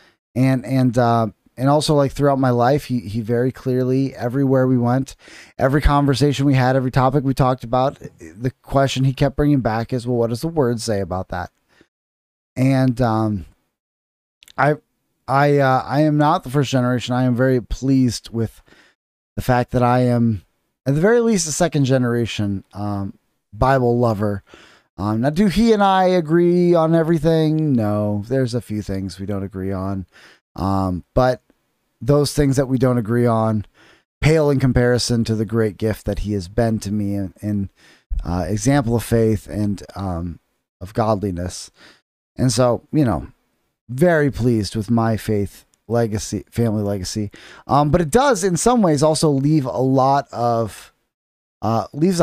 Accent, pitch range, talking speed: American, 105-140 Hz, 170 wpm